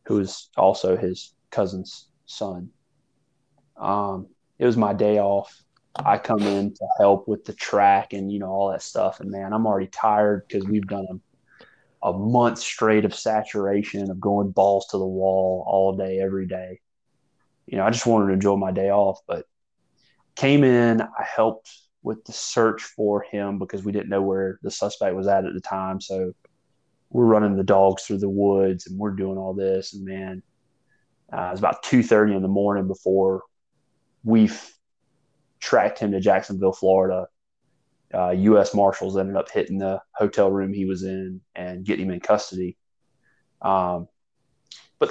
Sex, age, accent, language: male, 20-39, American, English